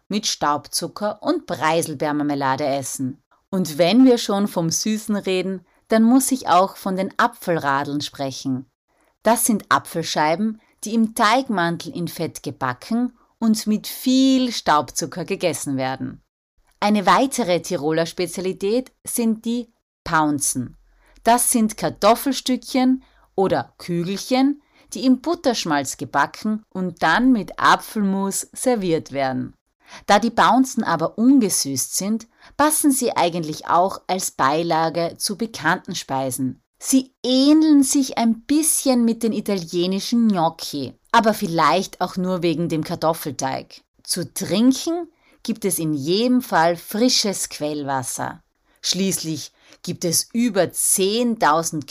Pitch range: 155-230 Hz